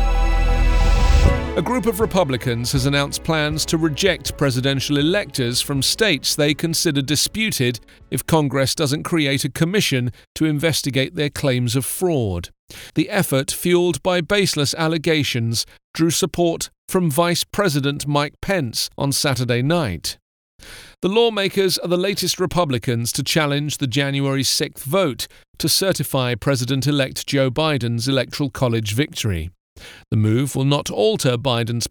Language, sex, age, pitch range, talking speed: English, male, 40-59, 125-170 Hz, 130 wpm